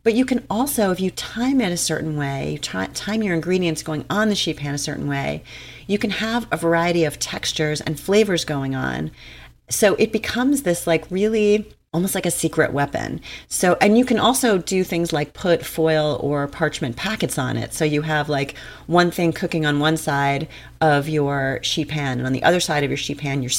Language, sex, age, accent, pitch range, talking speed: English, female, 40-59, American, 145-185 Hz, 210 wpm